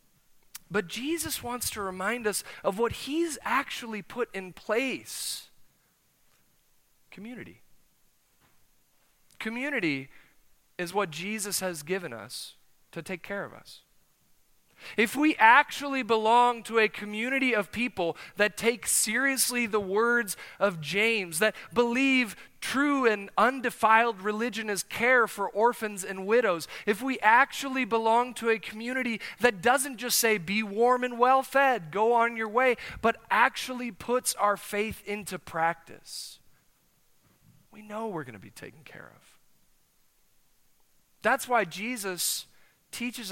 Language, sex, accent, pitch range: English, male, American, 175-240 Hz